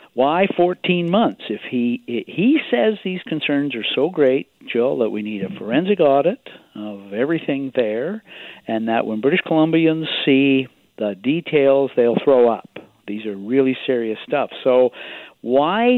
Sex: male